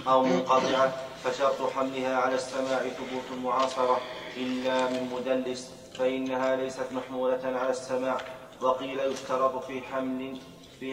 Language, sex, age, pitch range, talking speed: Arabic, male, 30-49, 130-135 Hz, 115 wpm